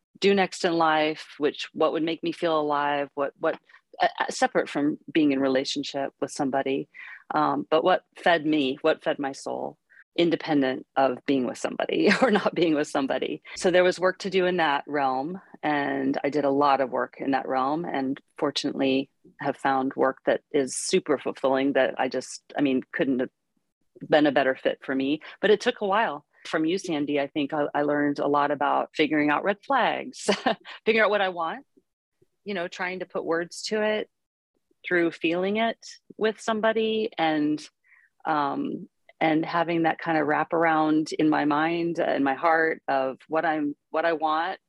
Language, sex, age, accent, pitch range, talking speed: English, female, 40-59, American, 140-185 Hz, 190 wpm